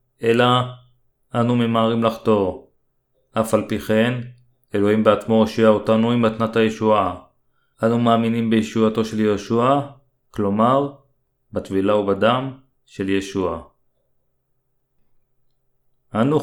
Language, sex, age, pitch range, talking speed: Hebrew, male, 40-59, 105-120 Hz, 95 wpm